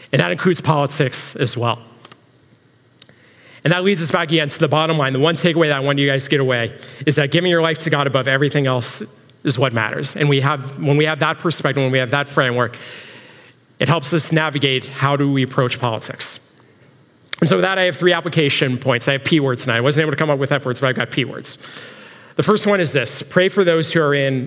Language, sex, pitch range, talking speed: English, male, 135-160 Hz, 250 wpm